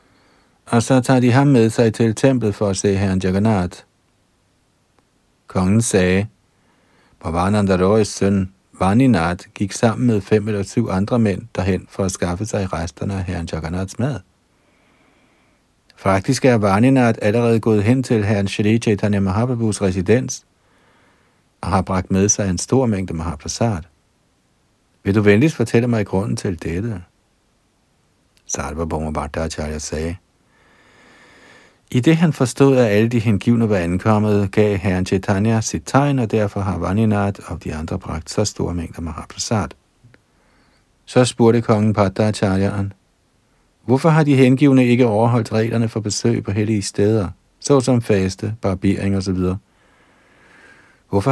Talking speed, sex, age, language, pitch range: 145 wpm, male, 50-69, Danish, 90-115 Hz